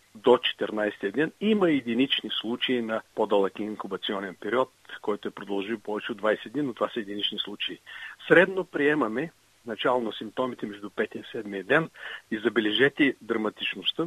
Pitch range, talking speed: 105-120 Hz, 150 wpm